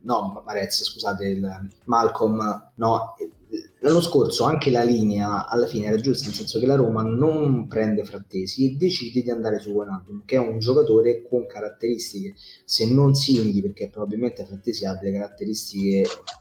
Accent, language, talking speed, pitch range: native, Italian, 165 wpm, 100-125 Hz